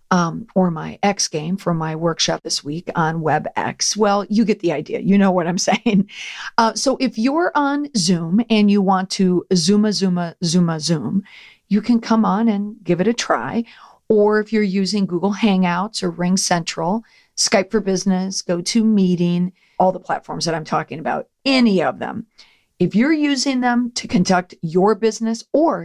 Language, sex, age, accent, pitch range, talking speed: English, female, 40-59, American, 175-225 Hz, 180 wpm